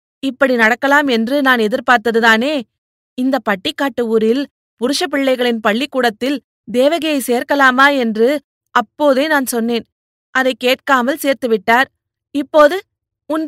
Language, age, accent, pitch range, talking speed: Tamil, 30-49, native, 235-280 Hz, 100 wpm